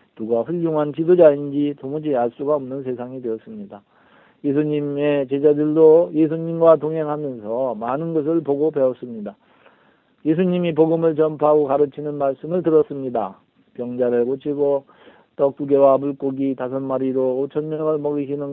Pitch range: 130-160 Hz